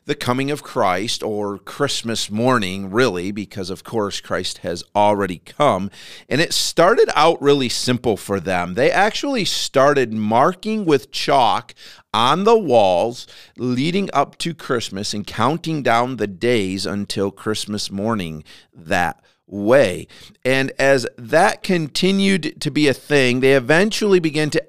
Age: 40-59